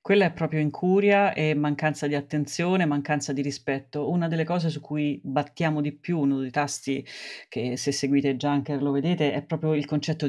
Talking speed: 190 wpm